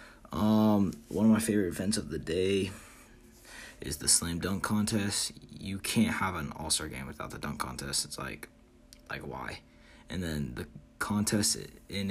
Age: 20-39